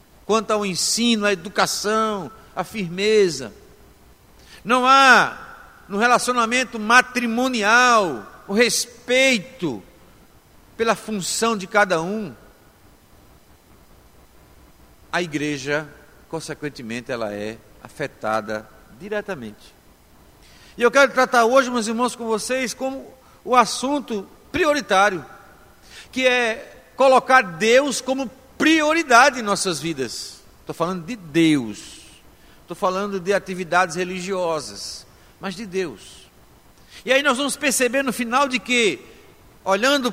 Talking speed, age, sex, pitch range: 105 wpm, 50-69, male, 185-255 Hz